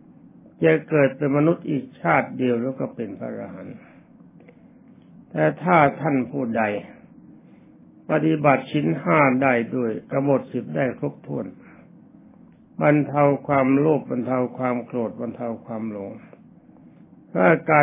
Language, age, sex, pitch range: Thai, 60-79, male, 120-145 Hz